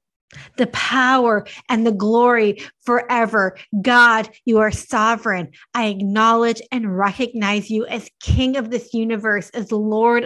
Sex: female